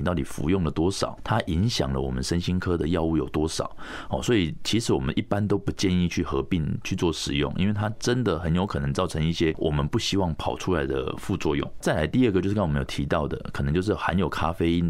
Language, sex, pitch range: Chinese, male, 75-100 Hz